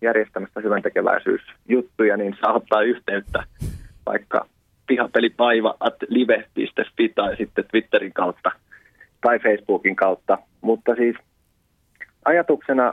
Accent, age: native, 20-39